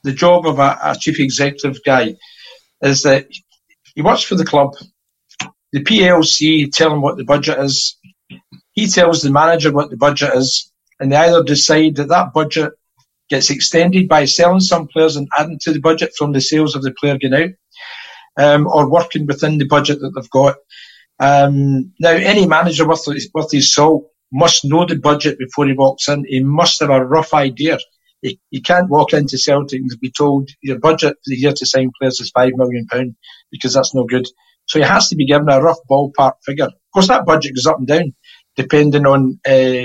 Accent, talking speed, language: British, 200 wpm, English